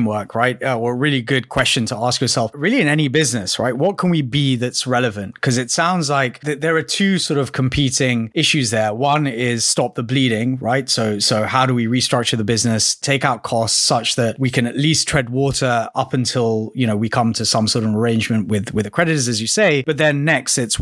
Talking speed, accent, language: 240 wpm, British, English